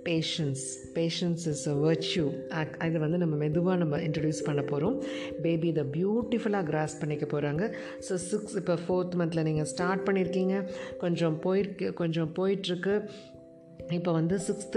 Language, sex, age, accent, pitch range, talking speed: Tamil, female, 50-69, native, 155-180 Hz, 165 wpm